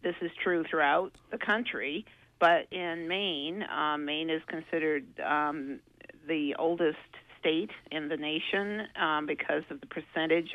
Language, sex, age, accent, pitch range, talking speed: English, female, 50-69, American, 145-180 Hz, 140 wpm